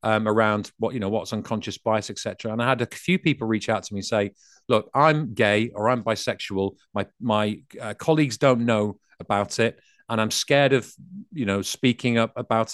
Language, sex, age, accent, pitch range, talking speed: English, male, 40-59, British, 100-130 Hz, 210 wpm